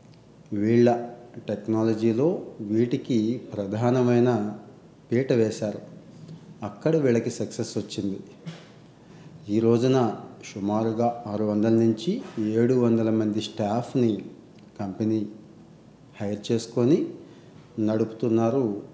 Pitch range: 110-125 Hz